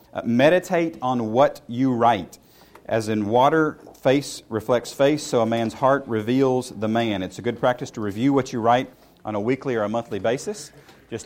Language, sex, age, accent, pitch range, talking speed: English, male, 40-59, American, 115-140 Hz, 190 wpm